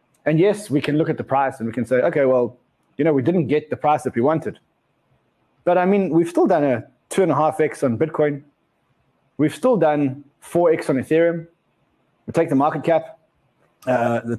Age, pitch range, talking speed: 20-39, 135-165 Hz, 215 wpm